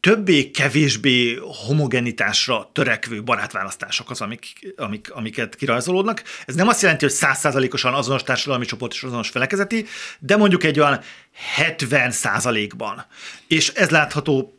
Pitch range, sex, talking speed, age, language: 120-155 Hz, male, 130 wpm, 40-59, Hungarian